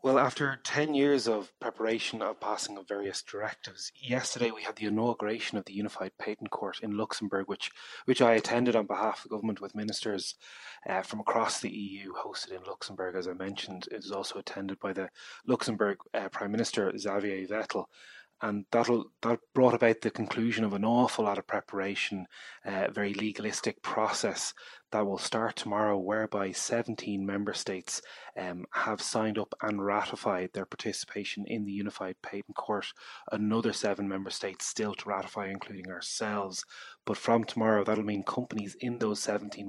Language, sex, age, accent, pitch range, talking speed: English, male, 20-39, Irish, 100-115 Hz, 170 wpm